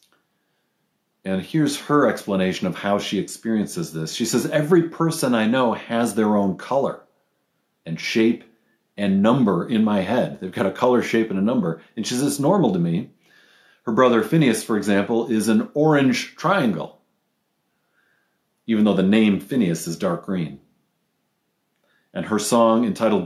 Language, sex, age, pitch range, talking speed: English, male, 40-59, 100-130 Hz, 160 wpm